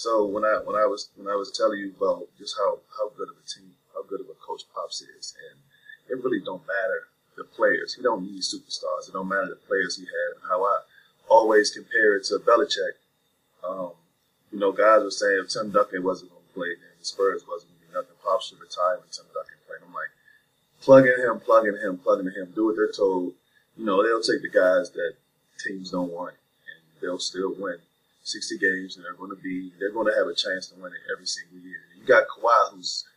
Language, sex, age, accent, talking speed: English, male, 30-49, American, 235 wpm